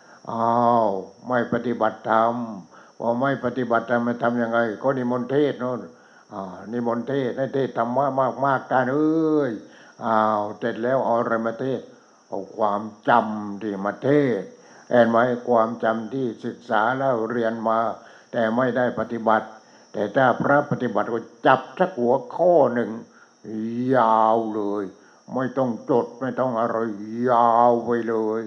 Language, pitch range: English, 115-130 Hz